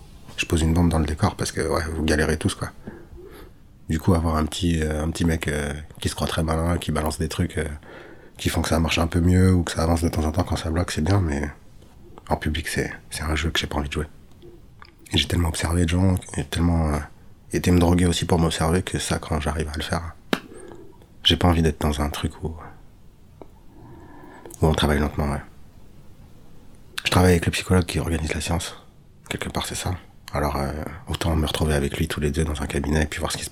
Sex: male